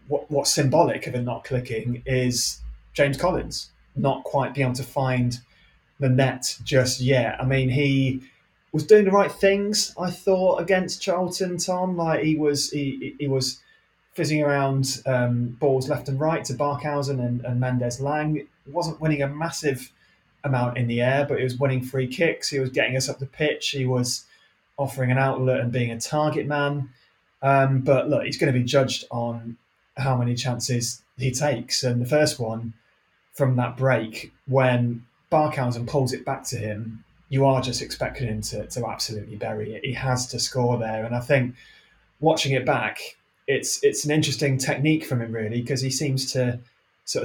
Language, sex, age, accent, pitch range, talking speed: English, male, 20-39, British, 120-145 Hz, 185 wpm